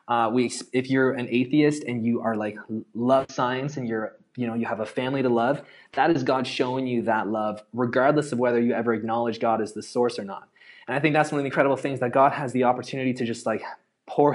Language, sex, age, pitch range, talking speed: English, male, 20-39, 115-140 Hz, 245 wpm